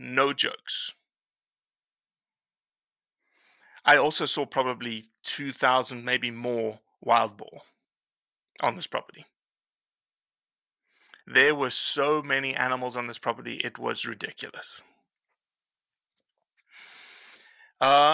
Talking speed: 85 wpm